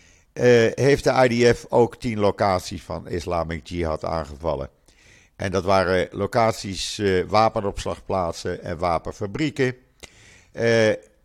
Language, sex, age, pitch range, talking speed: Dutch, male, 50-69, 90-120 Hz, 105 wpm